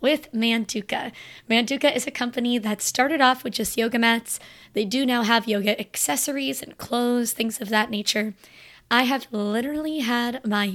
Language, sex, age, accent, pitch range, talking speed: English, female, 20-39, American, 215-255 Hz, 165 wpm